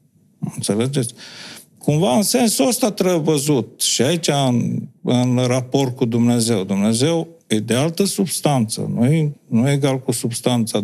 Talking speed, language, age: 135 wpm, Romanian, 50-69